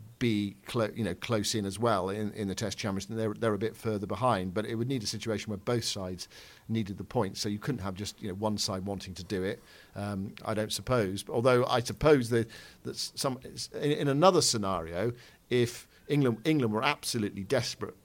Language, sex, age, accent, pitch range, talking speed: English, male, 50-69, British, 100-115 Hz, 215 wpm